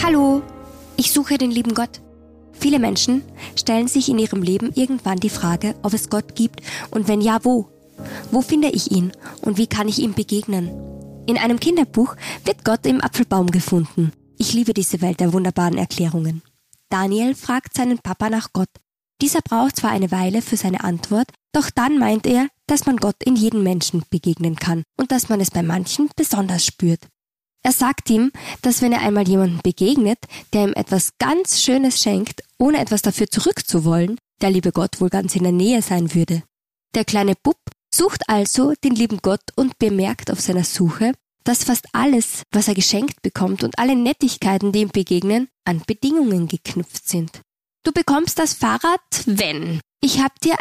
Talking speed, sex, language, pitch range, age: 180 wpm, female, German, 185-260 Hz, 20-39